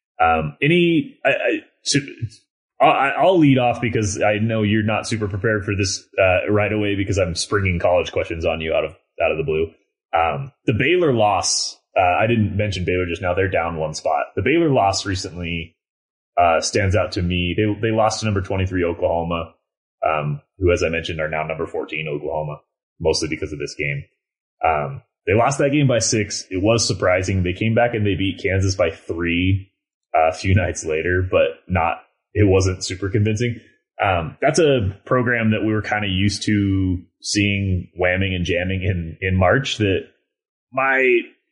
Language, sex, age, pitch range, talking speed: English, male, 30-49, 90-110 Hz, 185 wpm